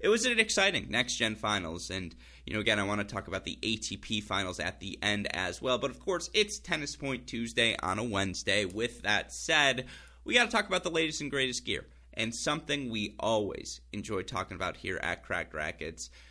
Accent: American